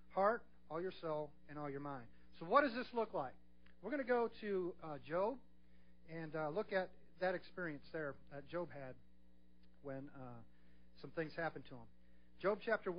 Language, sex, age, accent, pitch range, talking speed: English, male, 40-59, American, 140-205 Hz, 185 wpm